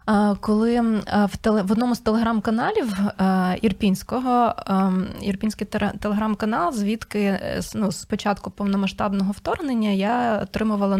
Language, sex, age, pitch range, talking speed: Ukrainian, female, 20-39, 195-230 Hz, 100 wpm